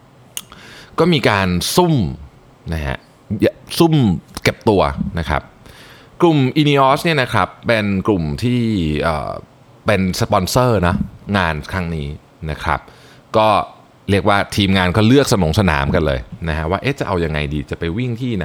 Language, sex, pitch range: Thai, male, 80-125 Hz